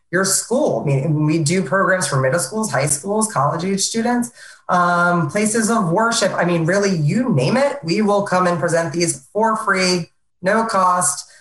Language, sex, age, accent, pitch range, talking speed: English, female, 20-39, American, 155-210 Hz, 185 wpm